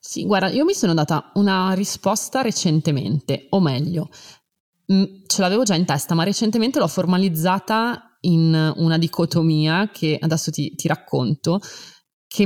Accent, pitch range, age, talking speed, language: native, 155-185 Hz, 20-39, 140 wpm, Italian